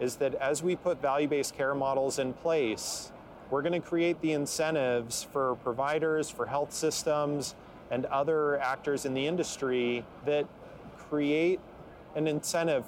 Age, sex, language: 30-49, male, English